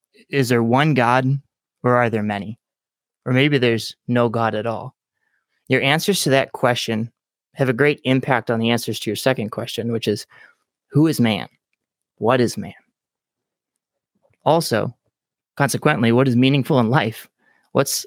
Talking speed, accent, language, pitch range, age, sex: 155 wpm, American, English, 115-140 Hz, 20-39, male